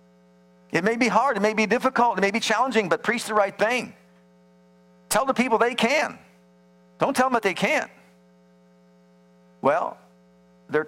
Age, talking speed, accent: 50-69, 165 wpm, American